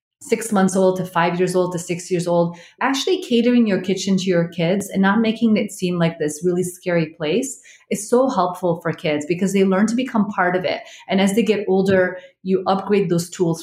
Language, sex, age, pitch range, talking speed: English, female, 30-49, 175-225 Hz, 220 wpm